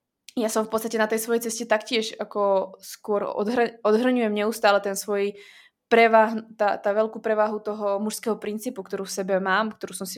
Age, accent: 20-39, native